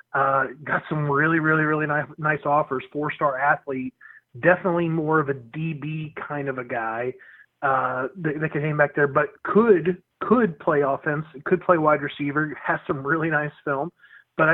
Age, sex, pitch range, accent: 30-49, male, 135-165 Hz, American